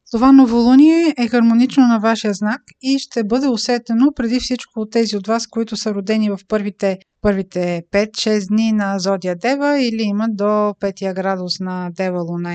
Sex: female